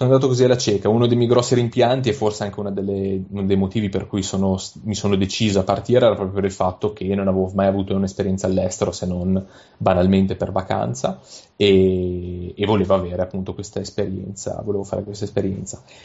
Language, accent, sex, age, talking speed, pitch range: Italian, native, male, 30-49, 195 wpm, 95-115 Hz